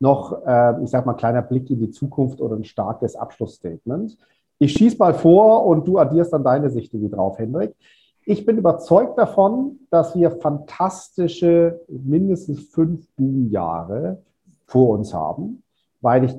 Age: 50-69